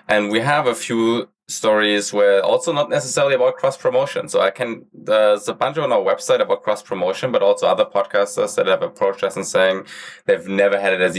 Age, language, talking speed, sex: 20-39, English, 215 wpm, male